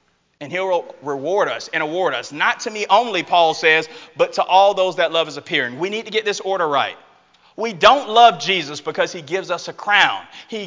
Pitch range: 175-220 Hz